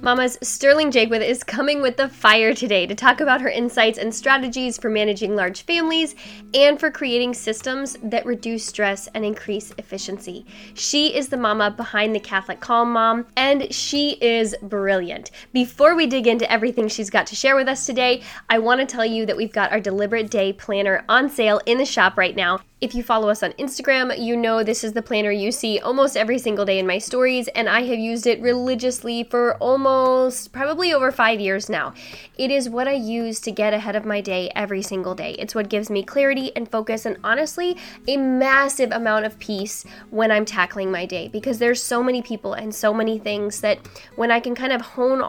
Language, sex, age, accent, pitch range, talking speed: English, female, 10-29, American, 210-255 Hz, 210 wpm